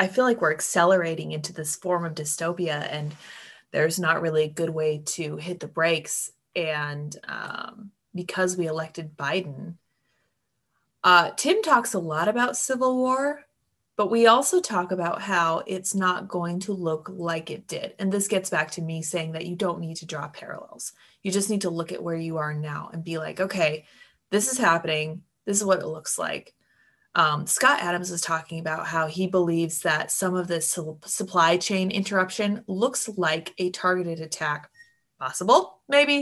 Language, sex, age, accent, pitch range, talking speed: English, female, 20-39, American, 160-190 Hz, 180 wpm